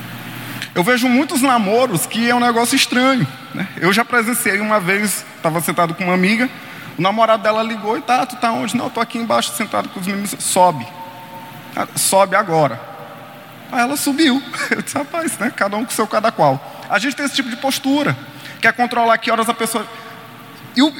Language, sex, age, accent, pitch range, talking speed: Portuguese, male, 20-39, Brazilian, 165-240 Hz, 195 wpm